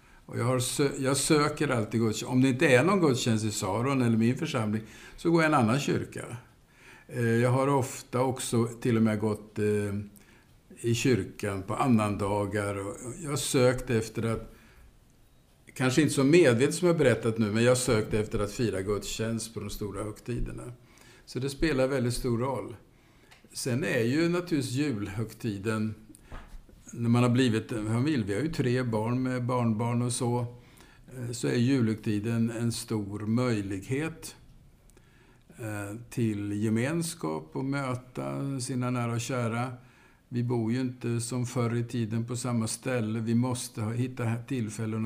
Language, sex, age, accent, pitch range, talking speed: Swedish, male, 60-79, Norwegian, 110-130 Hz, 160 wpm